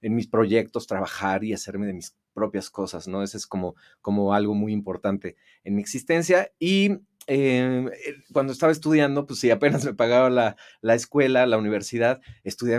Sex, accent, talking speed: male, Mexican, 175 wpm